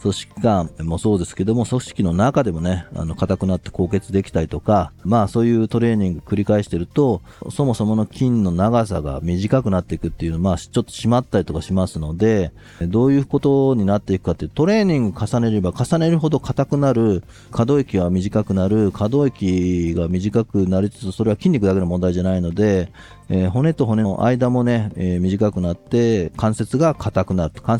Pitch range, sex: 90-120 Hz, male